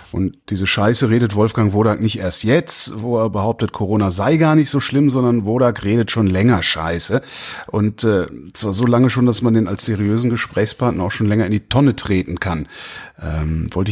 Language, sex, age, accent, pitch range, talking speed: German, male, 30-49, German, 95-115 Hz, 200 wpm